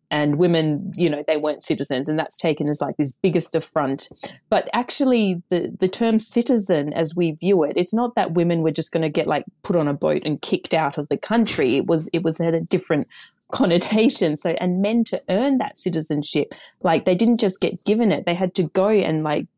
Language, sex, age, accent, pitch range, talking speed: English, female, 30-49, Australian, 155-210 Hz, 220 wpm